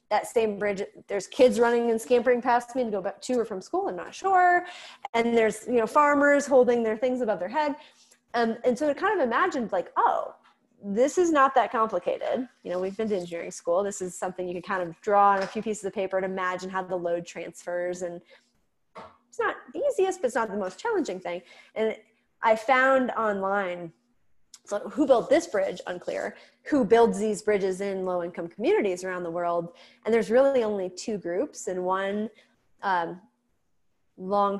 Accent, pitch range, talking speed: American, 185-250 Hz, 200 wpm